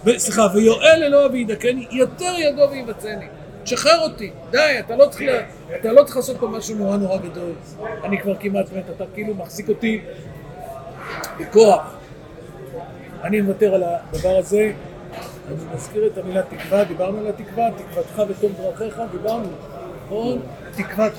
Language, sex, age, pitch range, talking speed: Hebrew, male, 50-69, 185-235 Hz, 125 wpm